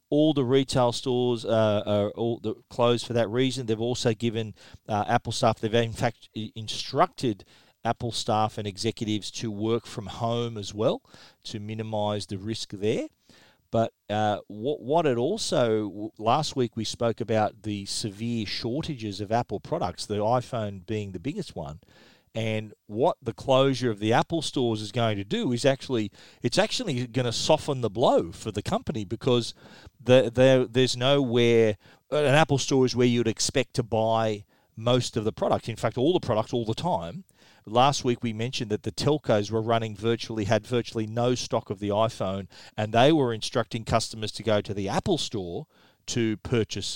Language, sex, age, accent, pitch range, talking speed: English, male, 40-59, Australian, 110-125 Hz, 175 wpm